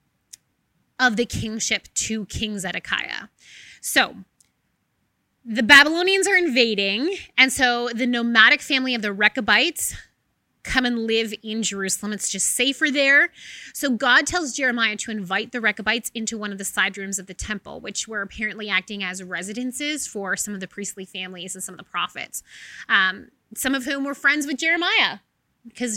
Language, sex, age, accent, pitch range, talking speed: English, female, 20-39, American, 205-260 Hz, 165 wpm